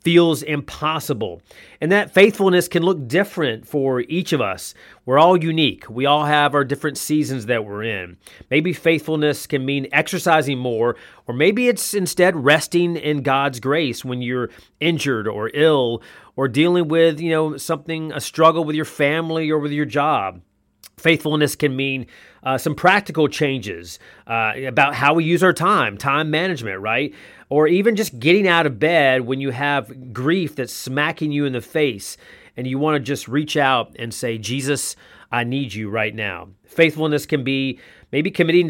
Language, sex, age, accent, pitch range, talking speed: English, male, 30-49, American, 130-165 Hz, 175 wpm